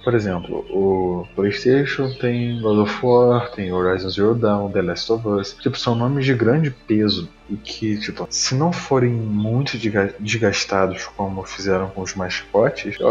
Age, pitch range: 20-39, 100-125 Hz